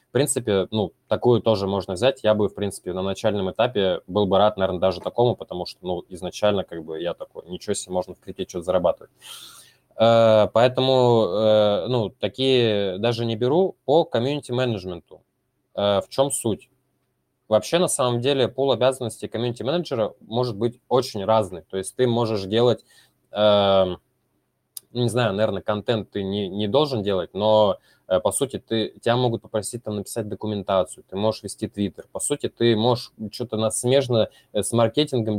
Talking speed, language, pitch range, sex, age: 165 wpm, Russian, 100-125 Hz, male, 20-39